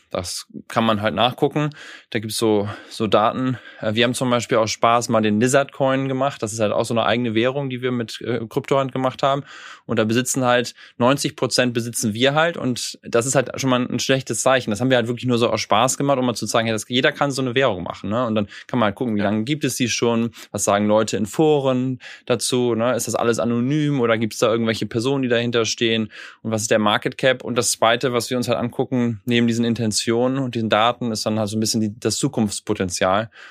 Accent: German